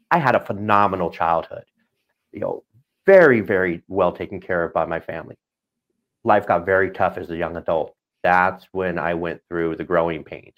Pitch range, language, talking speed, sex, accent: 85-105 Hz, English, 180 wpm, male, American